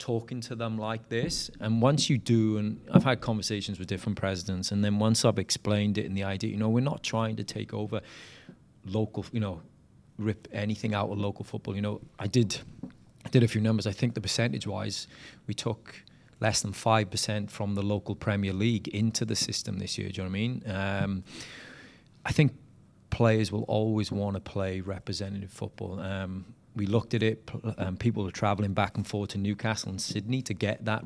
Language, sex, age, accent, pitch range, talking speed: English, male, 30-49, British, 100-110 Hz, 205 wpm